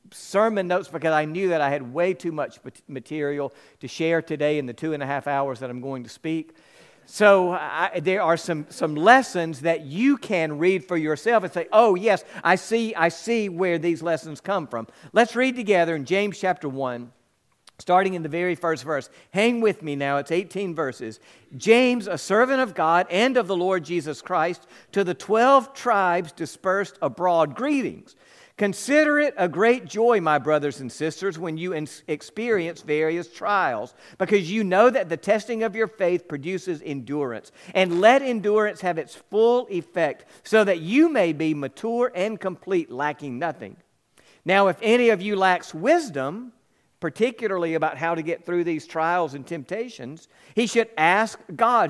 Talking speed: 180 wpm